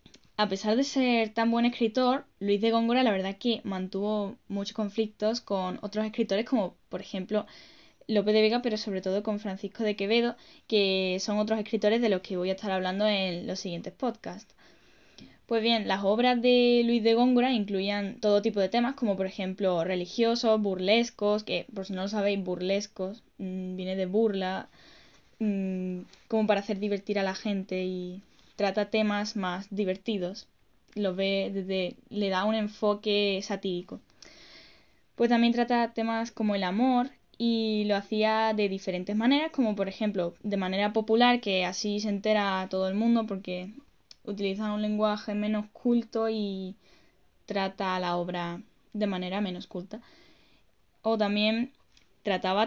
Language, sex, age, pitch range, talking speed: Spanish, female, 10-29, 190-225 Hz, 160 wpm